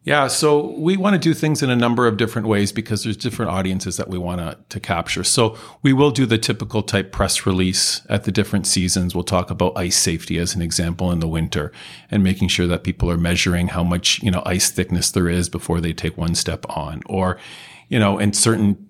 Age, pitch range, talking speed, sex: 40-59, 90-110 Hz, 230 wpm, male